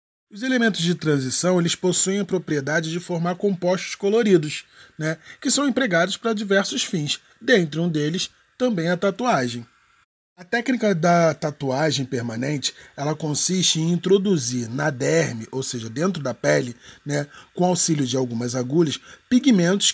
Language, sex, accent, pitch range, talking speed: Portuguese, male, Brazilian, 145-195 Hz, 145 wpm